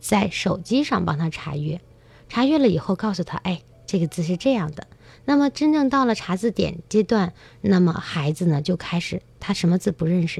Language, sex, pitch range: Chinese, female, 160-220 Hz